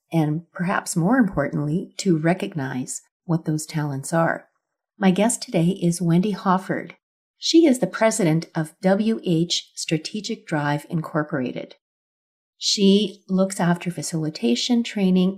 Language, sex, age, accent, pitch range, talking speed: English, female, 40-59, American, 160-205 Hz, 115 wpm